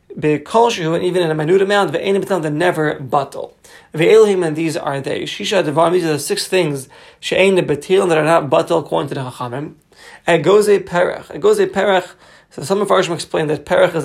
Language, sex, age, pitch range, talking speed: English, male, 30-49, 155-190 Hz, 190 wpm